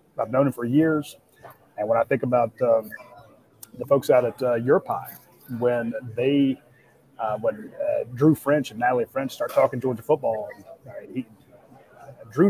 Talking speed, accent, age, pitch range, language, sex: 175 wpm, American, 30-49, 120-140 Hz, English, male